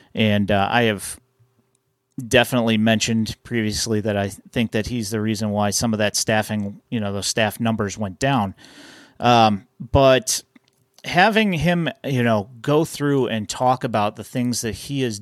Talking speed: 170 wpm